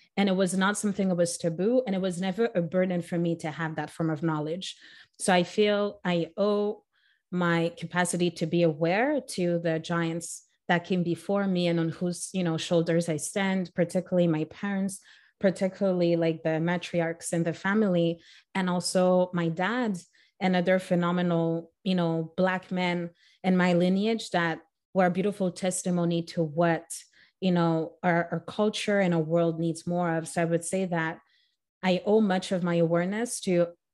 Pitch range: 170-190 Hz